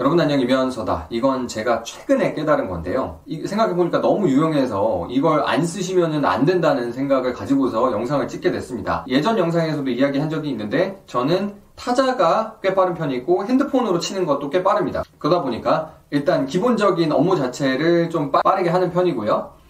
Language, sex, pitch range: Korean, male, 150-210 Hz